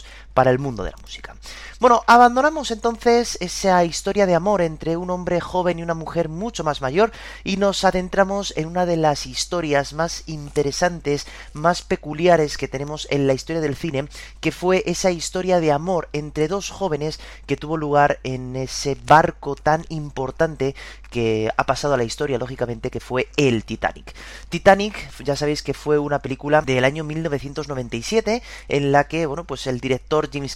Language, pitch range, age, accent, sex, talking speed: Spanish, 140-180 Hz, 30-49, Spanish, male, 175 wpm